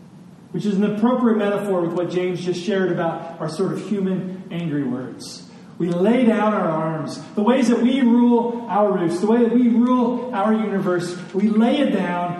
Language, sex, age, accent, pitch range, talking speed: English, male, 40-59, American, 180-220 Hz, 195 wpm